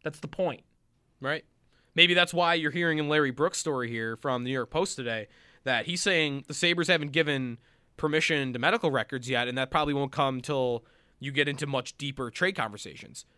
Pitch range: 125-155 Hz